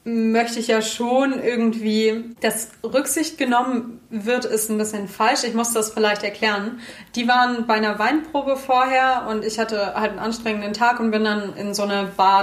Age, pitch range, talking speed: 20-39, 205-240 Hz, 185 wpm